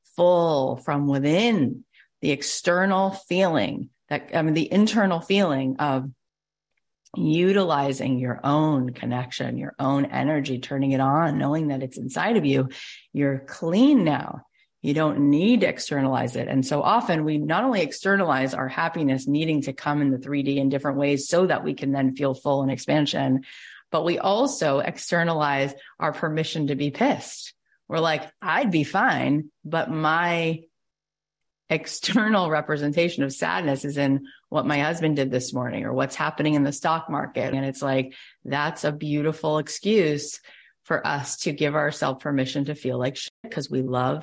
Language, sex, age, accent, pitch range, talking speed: English, female, 30-49, American, 135-165 Hz, 160 wpm